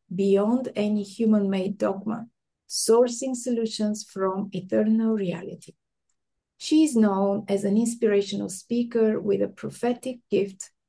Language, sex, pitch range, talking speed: English, female, 200-240 Hz, 110 wpm